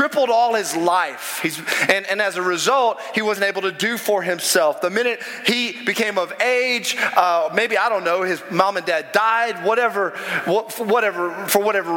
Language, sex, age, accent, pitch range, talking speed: English, male, 30-49, American, 175-225 Hz, 185 wpm